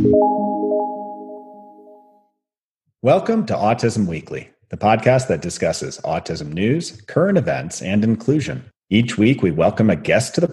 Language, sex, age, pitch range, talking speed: English, male, 40-59, 100-150 Hz, 125 wpm